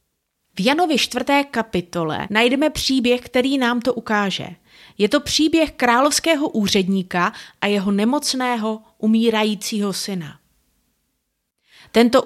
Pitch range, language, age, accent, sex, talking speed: 195-275 Hz, Czech, 30-49, native, female, 105 wpm